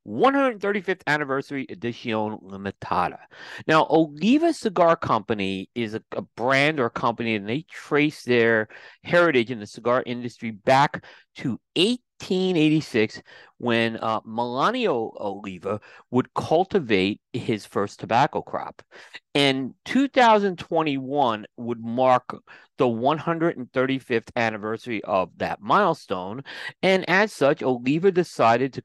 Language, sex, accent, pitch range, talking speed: English, male, American, 115-155 Hz, 110 wpm